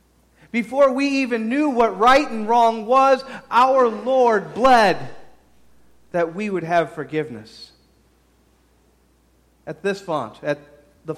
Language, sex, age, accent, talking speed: English, male, 40-59, American, 120 wpm